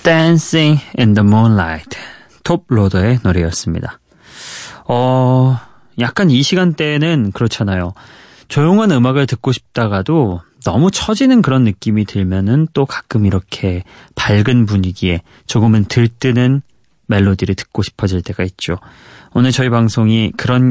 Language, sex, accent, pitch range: Korean, male, native, 100-145 Hz